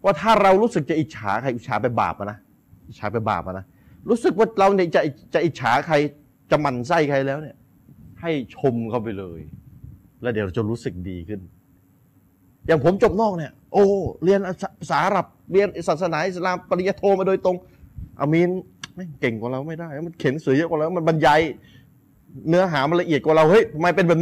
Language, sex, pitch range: Thai, male, 120-180 Hz